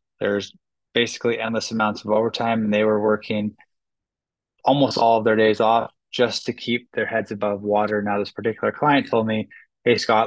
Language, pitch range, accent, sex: English, 105-115 Hz, American, male